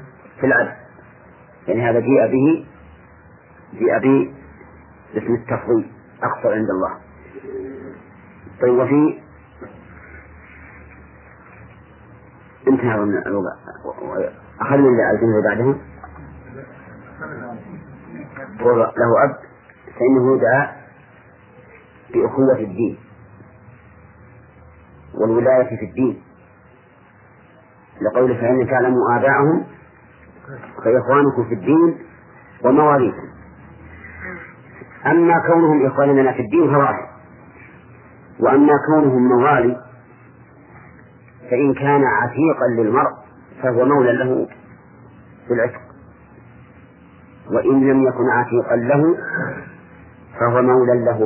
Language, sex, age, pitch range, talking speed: English, male, 40-59, 100-130 Hz, 75 wpm